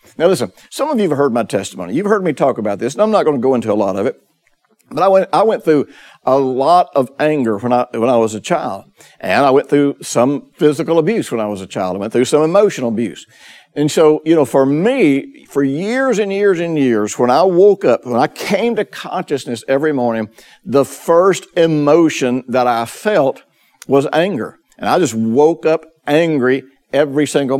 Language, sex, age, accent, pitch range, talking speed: English, male, 60-79, American, 120-165 Hz, 215 wpm